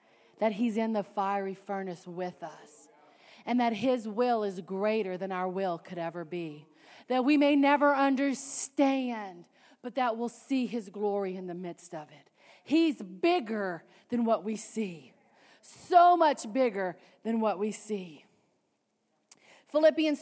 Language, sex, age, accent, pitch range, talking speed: English, female, 40-59, American, 215-315 Hz, 150 wpm